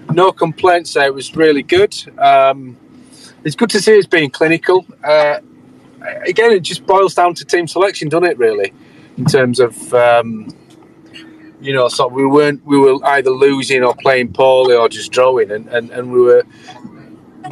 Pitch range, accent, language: 130-215 Hz, British, English